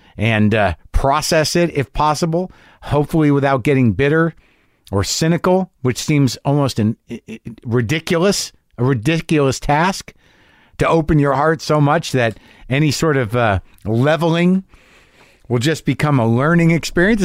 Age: 50-69